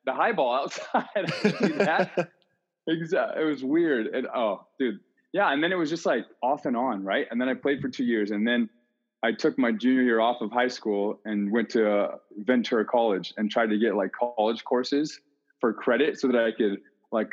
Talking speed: 200 wpm